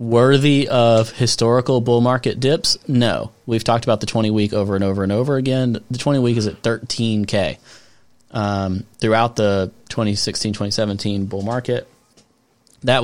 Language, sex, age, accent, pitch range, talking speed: English, male, 30-49, American, 100-120 Hz, 150 wpm